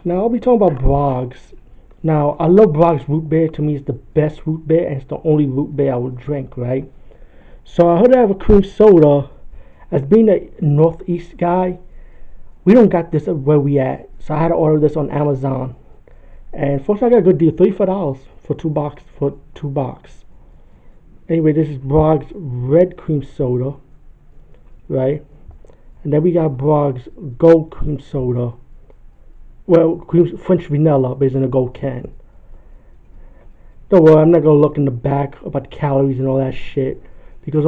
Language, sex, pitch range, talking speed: English, male, 135-170 Hz, 185 wpm